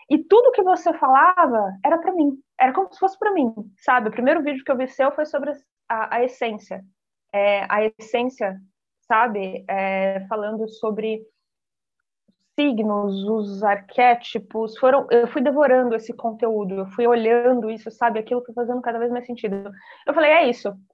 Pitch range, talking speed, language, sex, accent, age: 215-290 Hz, 175 wpm, Portuguese, female, Brazilian, 20-39